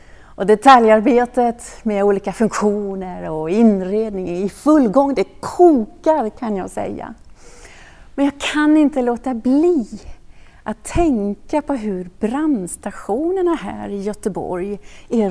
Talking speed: 120 wpm